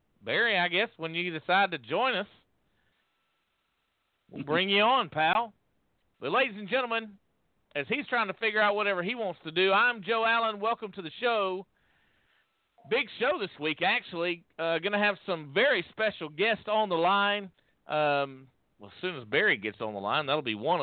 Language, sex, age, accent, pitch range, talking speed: English, male, 50-69, American, 130-210 Hz, 185 wpm